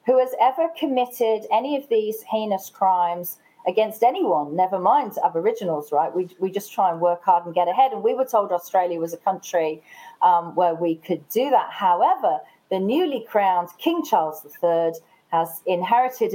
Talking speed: 175 wpm